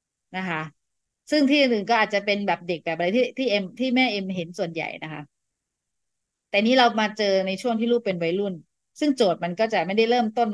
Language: Thai